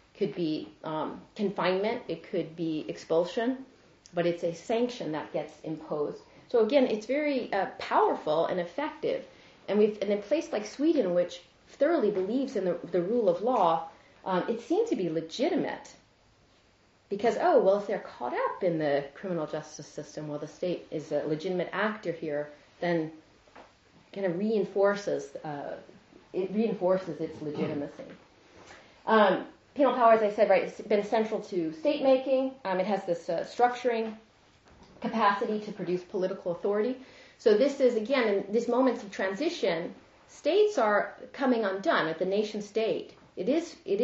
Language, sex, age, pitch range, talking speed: English, female, 30-49, 170-240 Hz, 160 wpm